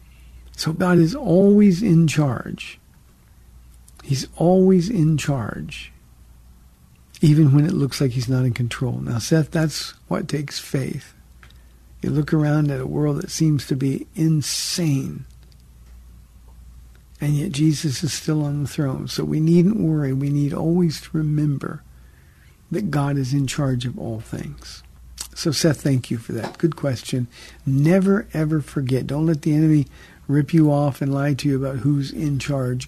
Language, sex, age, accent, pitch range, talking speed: English, male, 60-79, American, 125-160 Hz, 160 wpm